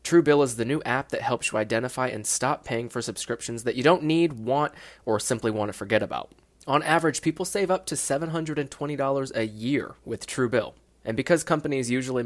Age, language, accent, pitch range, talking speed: 20-39, English, American, 110-135 Hz, 195 wpm